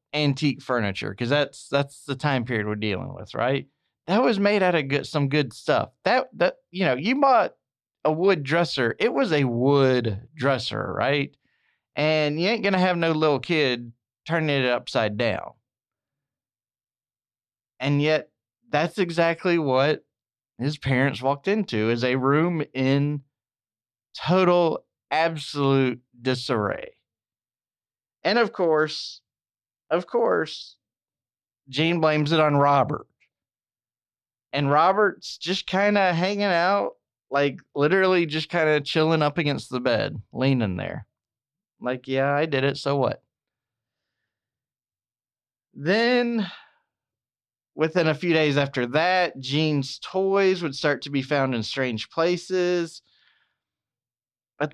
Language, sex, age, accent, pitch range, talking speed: English, male, 30-49, American, 125-165 Hz, 130 wpm